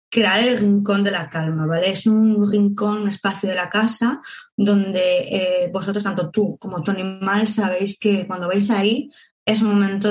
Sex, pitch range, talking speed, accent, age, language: female, 180-220 Hz, 185 wpm, Spanish, 20-39, Spanish